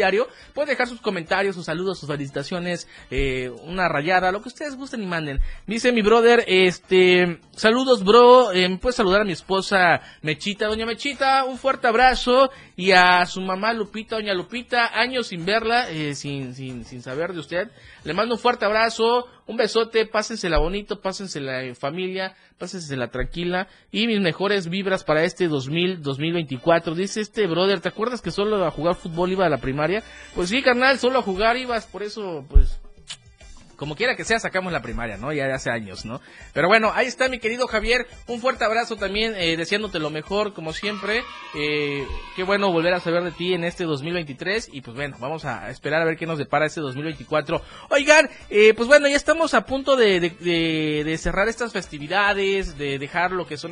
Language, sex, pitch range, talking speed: Spanish, male, 155-225 Hz, 195 wpm